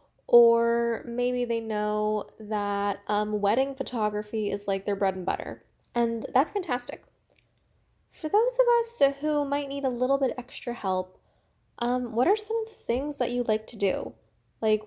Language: English